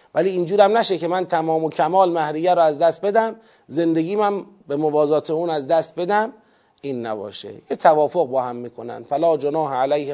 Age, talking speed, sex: 30-49, 190 wpm, male